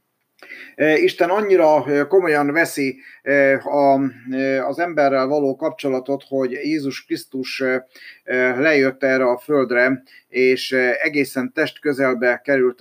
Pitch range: 120-140 Hz